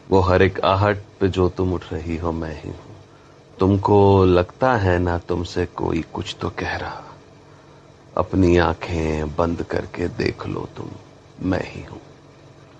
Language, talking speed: Hindi, 155 wpm